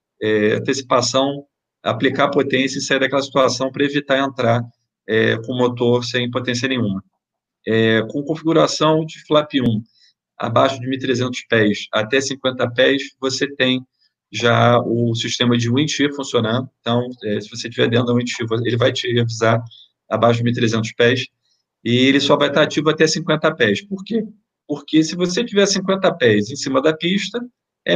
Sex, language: male, Portuguese